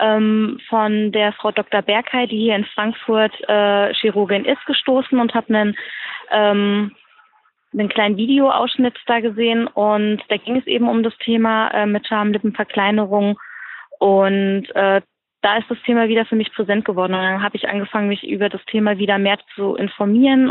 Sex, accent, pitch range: female, German, 200-230 Hz